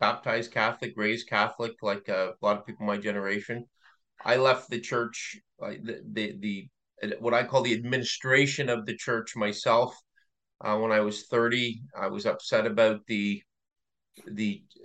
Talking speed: 160 wpm